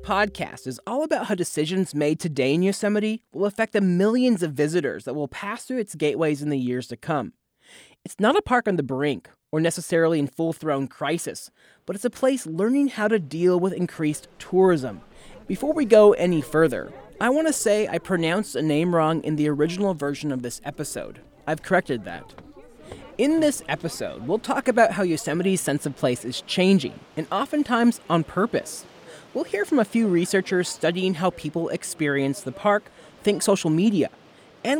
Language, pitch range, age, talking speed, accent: English, 155-215 Hz, 30-49, 185 wpm, American